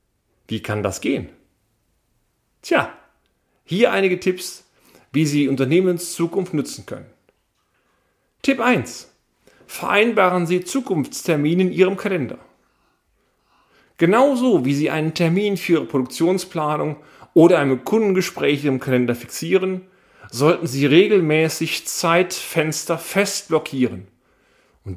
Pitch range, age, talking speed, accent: 135-180 Hz, 40-59, 100 wpm, German